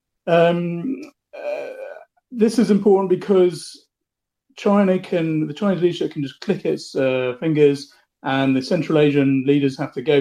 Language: English